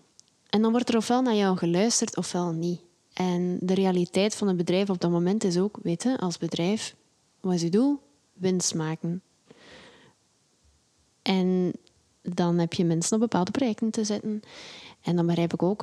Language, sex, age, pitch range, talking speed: Dutch, female, 20-39, 175-205 Hz, 175 wpm